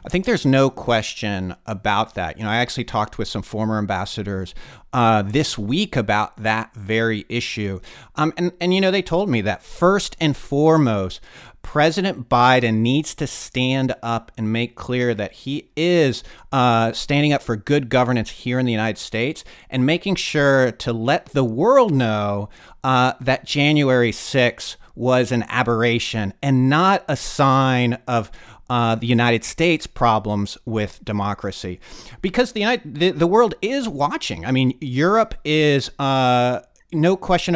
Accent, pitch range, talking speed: American, 115-150 Hz, 160 wpm